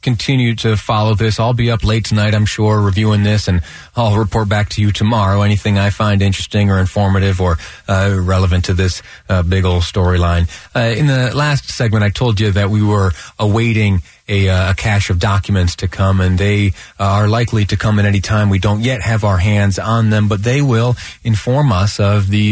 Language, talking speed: English, 210 wpm